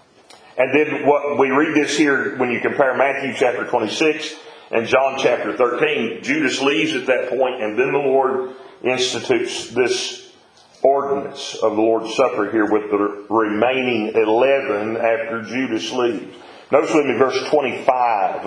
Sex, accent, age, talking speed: male, American, 40-59, 150 wpm